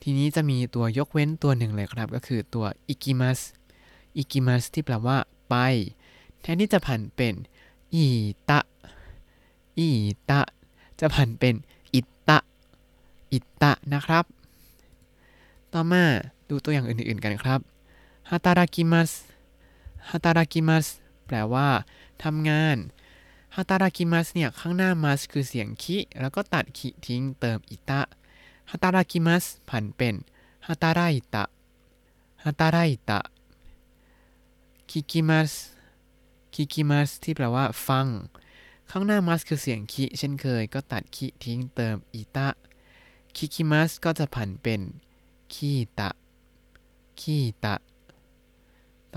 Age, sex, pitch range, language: 20-39, male, 115-155 Hz, Thai